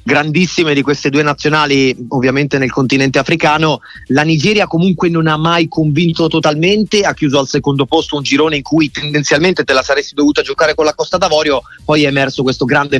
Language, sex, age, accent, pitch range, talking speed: Italian, male, 30-49, native, 135-165 Hz, 190 wpm